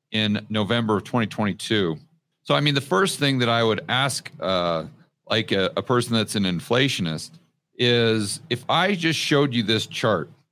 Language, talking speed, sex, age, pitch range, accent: English, 170 wpm, male, 40-59, 95-125 Hz, American